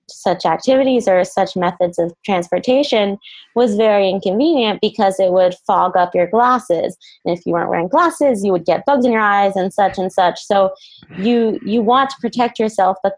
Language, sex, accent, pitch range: English, female, American, 175-210 Hz